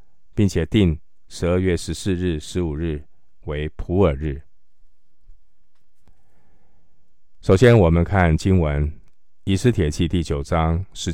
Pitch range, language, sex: 75-90 Hz, Chinese, male